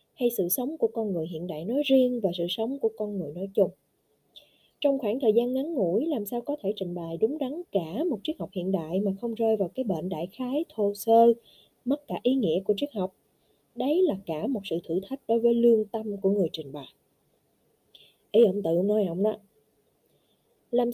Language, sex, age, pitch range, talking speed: Vietnamese, female, 20-39, 195-265 Hz, 220 wpm